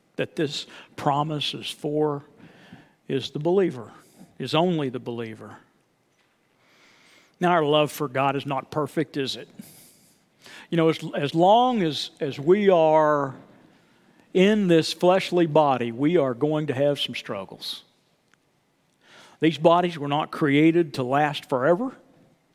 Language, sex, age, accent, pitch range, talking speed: English, male, 50-69, American, 150-195 Hz, 135 wpm